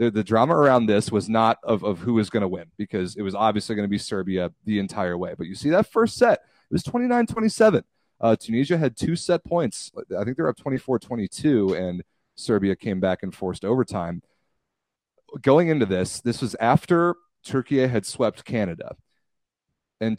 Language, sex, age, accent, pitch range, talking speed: English, male, 30-49, American, 105-135 Hz, 185 wpm